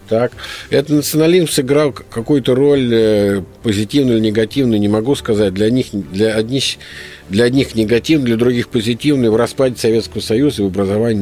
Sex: male